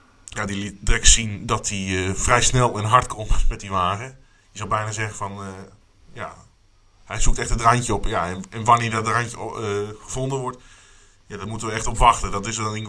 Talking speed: 220 wpm